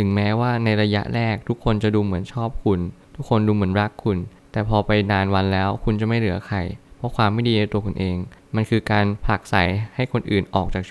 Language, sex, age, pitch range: Thai, male, 20-39, 95-115 Hz